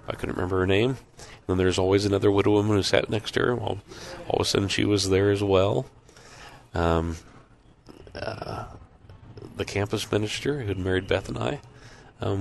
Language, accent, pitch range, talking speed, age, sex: English, American, 85-110 Hz, 185 wpm, 40-59, male